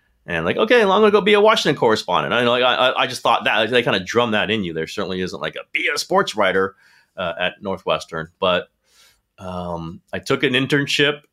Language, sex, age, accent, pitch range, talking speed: English, male, 30-49, American, 90-140 Hz, 240 wpm